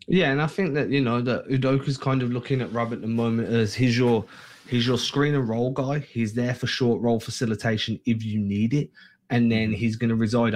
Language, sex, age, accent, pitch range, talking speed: English, male, 20-39, British, 110-130 Hz, 225 wpm